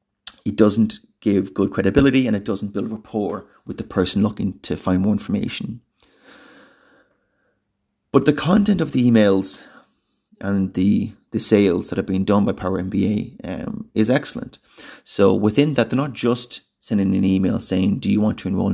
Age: 30-49